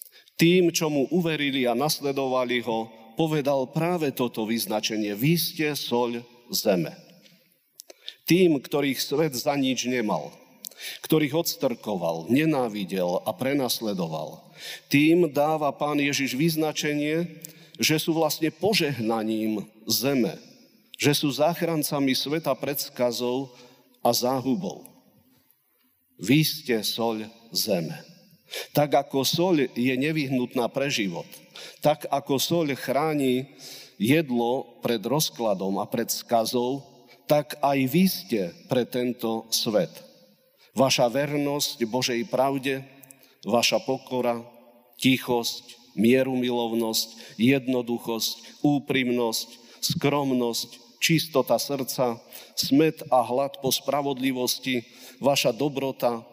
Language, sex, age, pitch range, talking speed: Slovak, male, 50-69, 120-150 Hz, 95 wpm